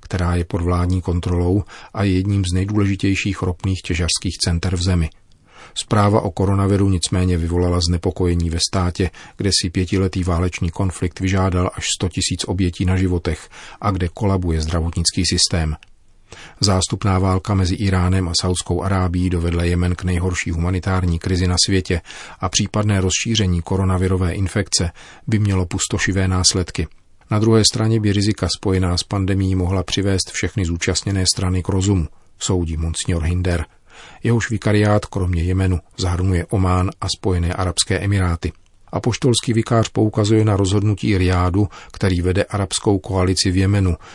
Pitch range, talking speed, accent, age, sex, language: 90-100 Hz, 140 wpm, native, 40-59, male, Czech